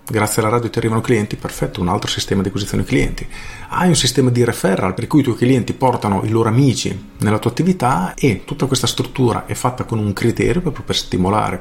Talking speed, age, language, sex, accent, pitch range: 215 wpm, 40-59, Italian, male, native, 100-130 Hz